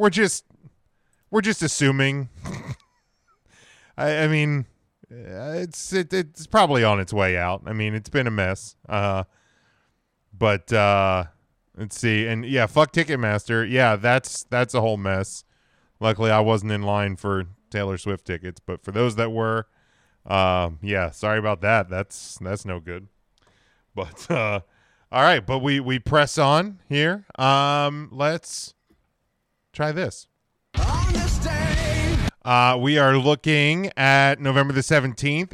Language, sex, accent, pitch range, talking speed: English, male, American, 110-150 Hz, 140 wpm